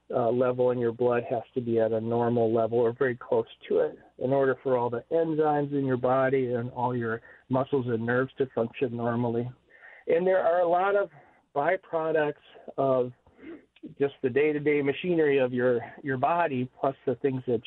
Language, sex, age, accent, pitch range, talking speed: English, male, 40-59, American, 125-165 Hz, 185 wpm